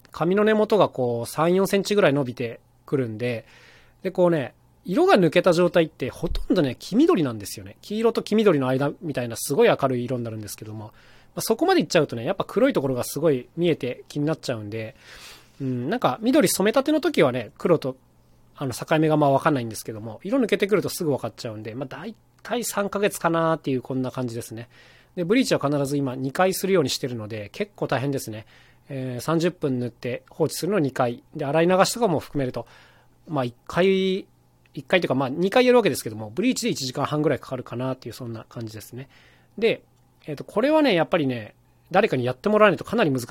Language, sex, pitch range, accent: Japanese, male, 125-185 Hz, native